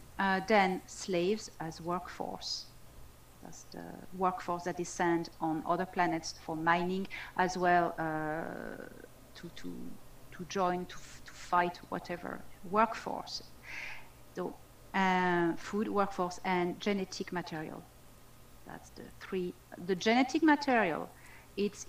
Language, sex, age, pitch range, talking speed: English, female, 40-59, 165-190 Hz, 115 wpm